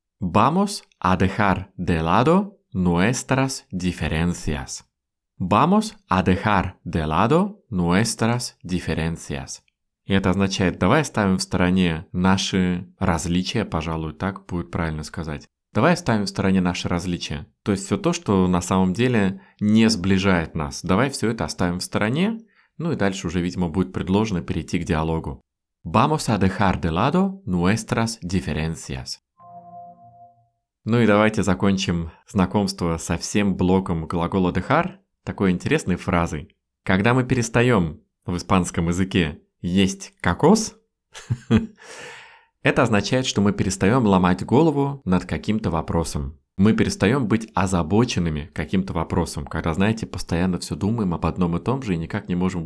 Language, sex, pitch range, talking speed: Russian, male, 90-115 Hz, 130 wpm